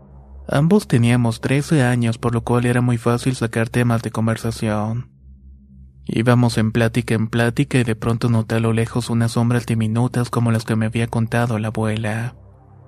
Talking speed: 170 wpm